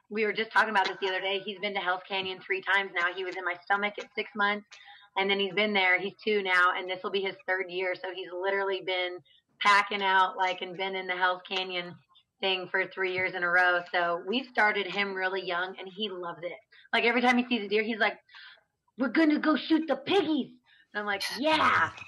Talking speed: 245 wpm